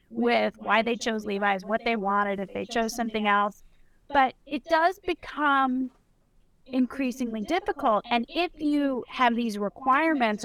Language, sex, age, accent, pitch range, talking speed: English, female, 30-49, American, 210-265 Hz, 145 wpm